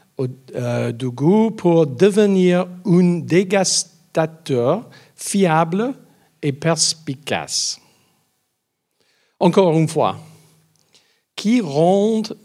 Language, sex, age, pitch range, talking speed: French, male, 50-69, 145-190 Hz, 65 wpm